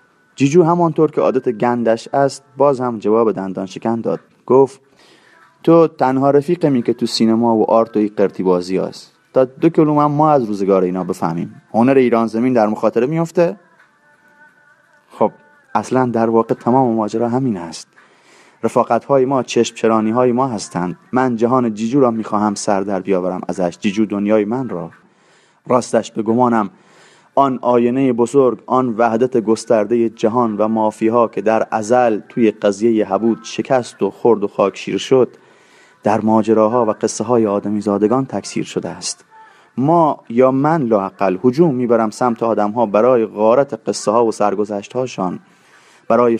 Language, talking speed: Persian, 150 wpm